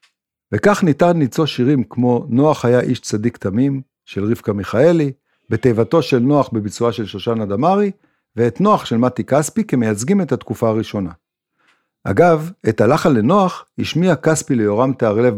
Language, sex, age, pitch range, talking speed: Hebrew, male, 50-69, 110-155 Hz, 145 wpm